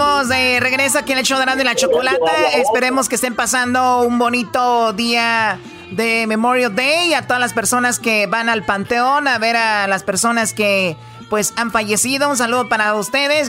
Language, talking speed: Spanish, 180 wpm